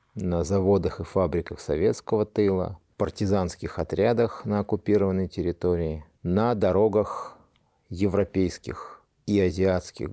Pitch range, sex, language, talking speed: 90-115 Hz, male, Russian, 95 wpm